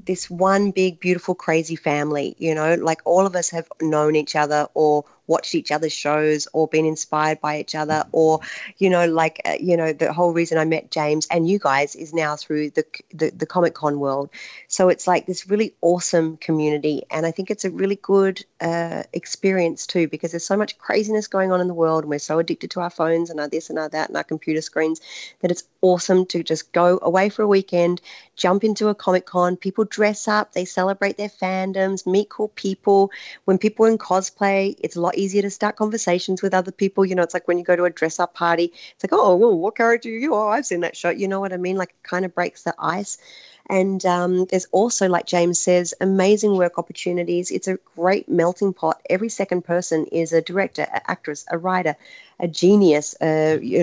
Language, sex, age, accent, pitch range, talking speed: English, female, 40-59, Australian, 160-195 Hz, 220 wpm